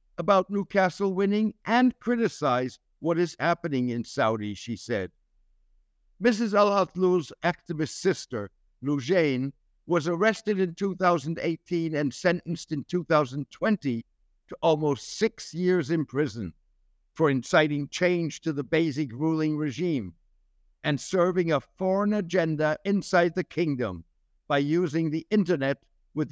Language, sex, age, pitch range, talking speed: English, male, 60-79, 120-180 Hz, 120 wpm